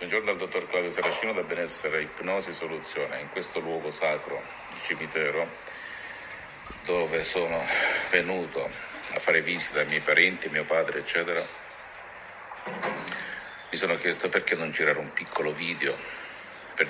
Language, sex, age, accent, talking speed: Italian, male, 50-69, native, 135 wpm